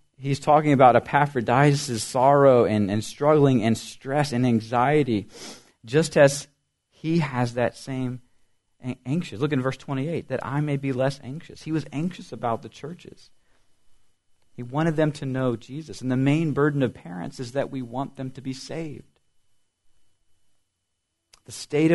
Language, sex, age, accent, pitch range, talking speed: English, male, 40-59, American, 95-135 Hz, 155 wpm